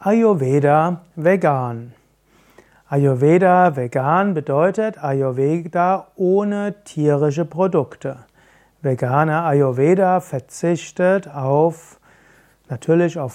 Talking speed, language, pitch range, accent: 60 wpm, German, 145-185 Hz, German